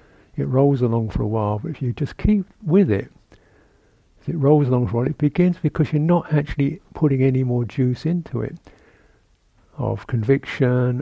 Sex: male